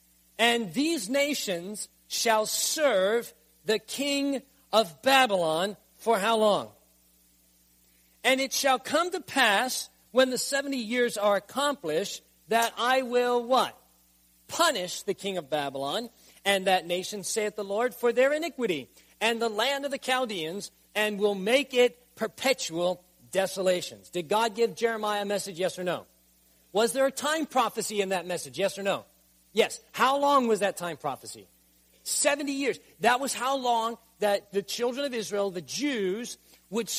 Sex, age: male, 40-59